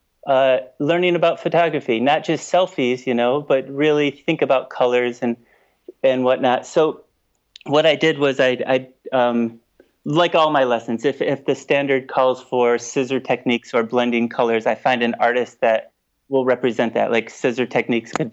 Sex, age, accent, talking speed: male, 30-49, American, 170 wpm